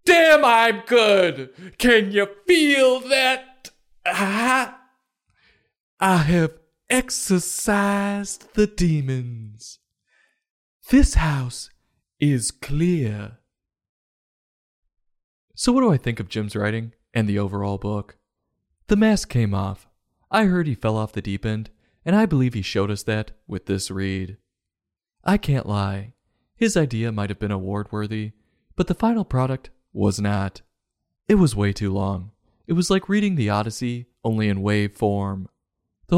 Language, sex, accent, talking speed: English, male, American, 135 wpm